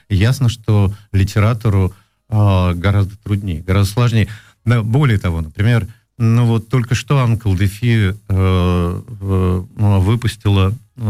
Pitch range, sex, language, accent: 95-115 Hz, male, Russian, native